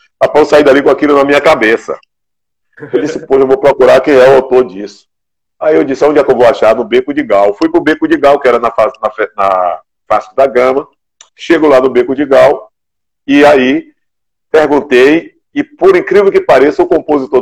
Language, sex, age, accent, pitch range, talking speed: Portuguese, male, 40-59, Brazilian, 125-175 Hz, 215 wpm